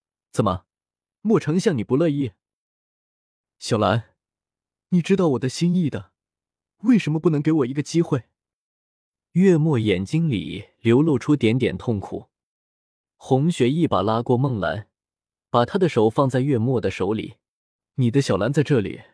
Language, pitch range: Chinese, 110-160 Hz